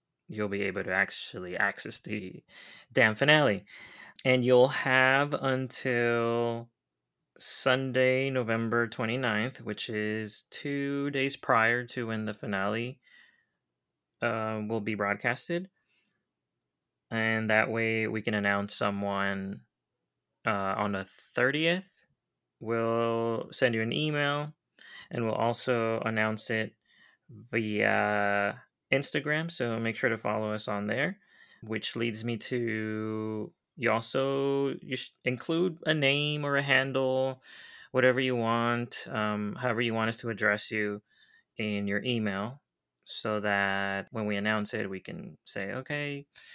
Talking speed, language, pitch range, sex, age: 125 wpm, English, 105-130 Hz, male, 20-39